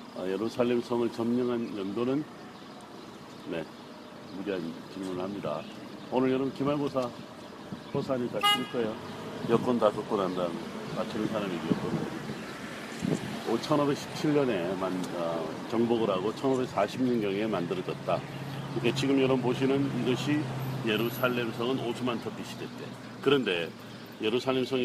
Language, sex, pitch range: Korean, male, 100-130 Hz